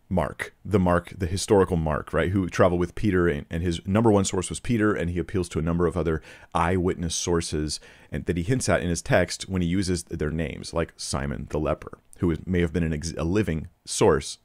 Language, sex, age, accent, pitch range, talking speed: English, male, 40-59, American, 80-100 Hz, 220 wpm